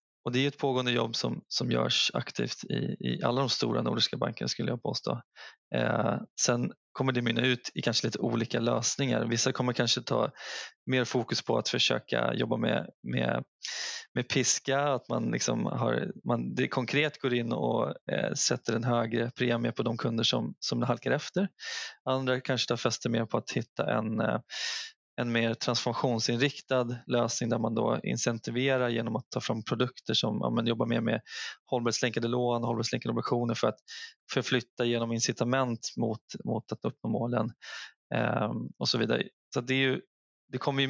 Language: Swedish